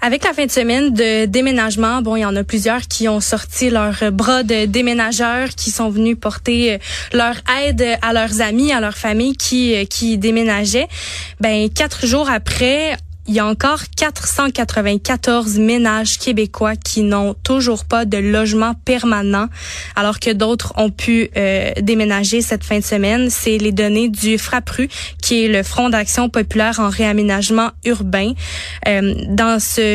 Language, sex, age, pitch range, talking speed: French, female, 20-39, 210-240 Hz, 160 wpm